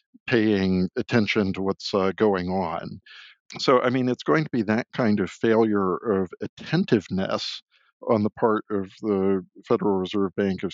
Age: 50-69